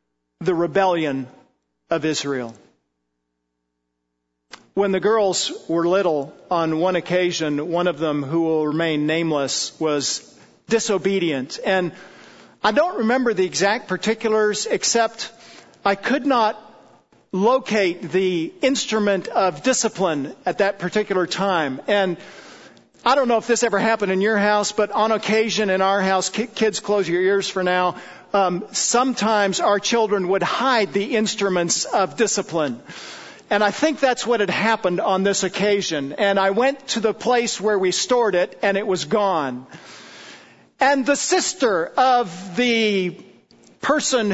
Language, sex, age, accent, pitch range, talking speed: English, male, 50-69, American, 180-240 Hz, 140 wpm